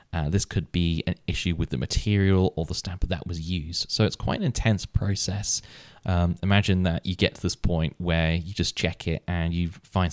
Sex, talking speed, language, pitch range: male, 220 wpm, English, 85-100 Hz